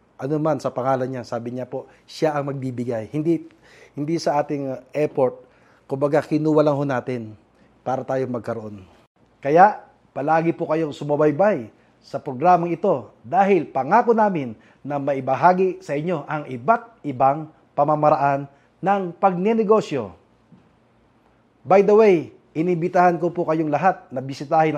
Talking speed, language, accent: 130 wpm, Filipino, native